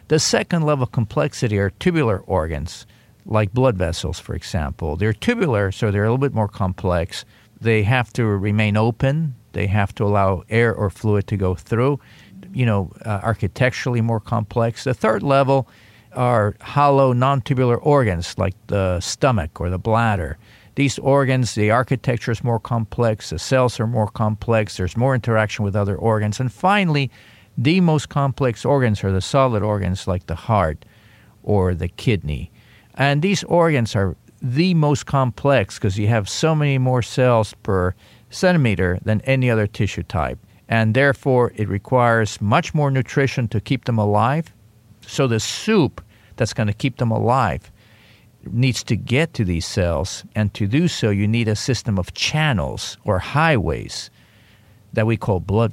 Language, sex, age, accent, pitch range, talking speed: English, male, 50-69, American, 100-130 Hz, 165 wpm